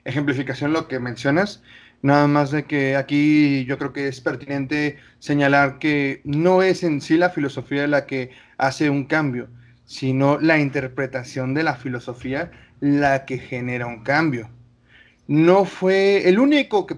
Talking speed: 150 wpm